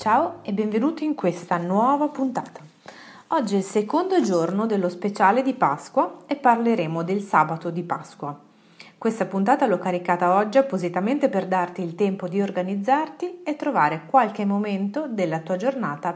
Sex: female